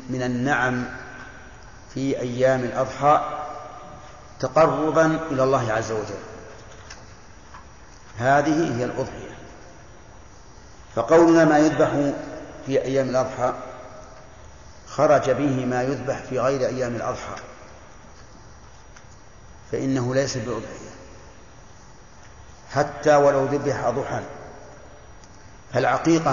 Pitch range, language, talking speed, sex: 125-140 Hz, Arabic, 80 wpm, male